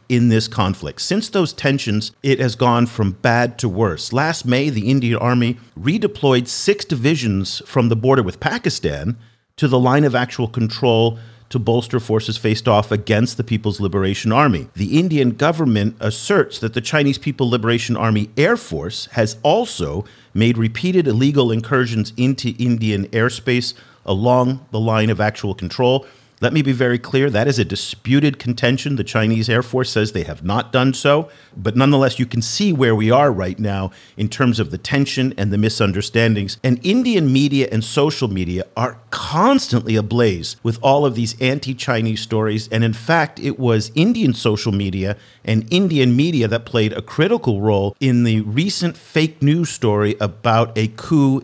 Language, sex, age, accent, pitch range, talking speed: English, male, 50-69, American, 110-140 Hz, 170 wpm